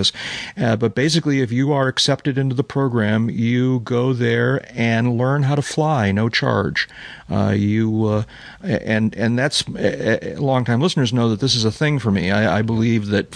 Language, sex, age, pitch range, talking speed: English, male, 40-59, 100-125 Hz, 185 wpm